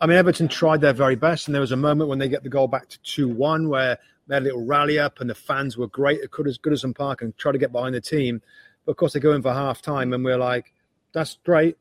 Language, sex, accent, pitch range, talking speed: English, male, British, 125-150 Hz, 300 wpm